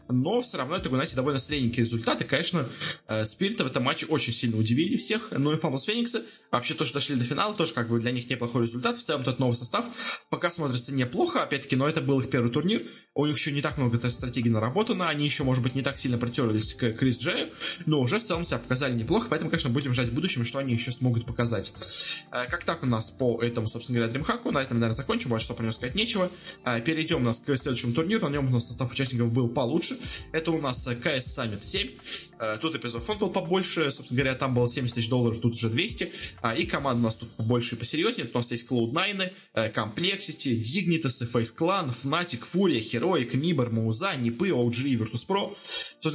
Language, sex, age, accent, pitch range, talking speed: Russian, male, 20-39, native, 120-160 Hz, 215 wpm